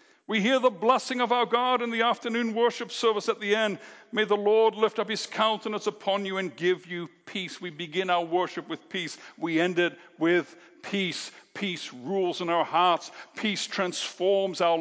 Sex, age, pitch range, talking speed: male, 60-79, 160-225 Hz, 190 wpm